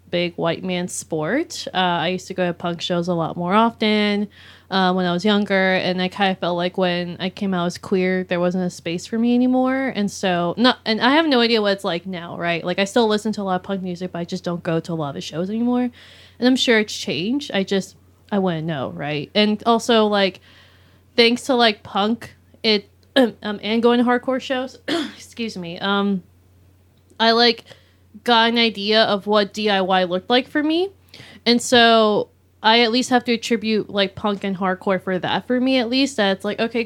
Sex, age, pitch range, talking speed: female, 20-39, 180-225 Hz, 225 wpm